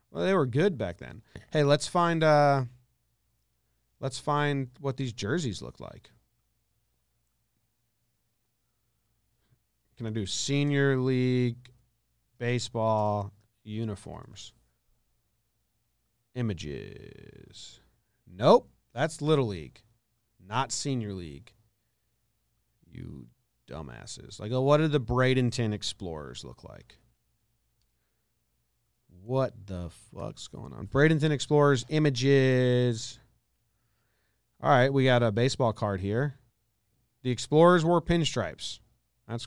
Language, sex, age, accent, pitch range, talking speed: English, male, 40-59, American, 110-130 Hz, 95 wpm